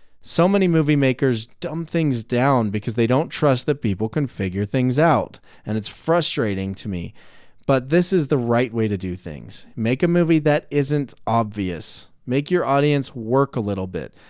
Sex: male